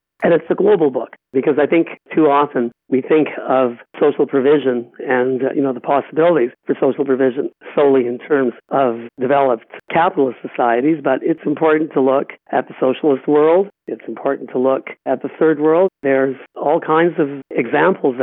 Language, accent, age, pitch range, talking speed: English, American, 50-69, 130-145 Hz, 175 wpm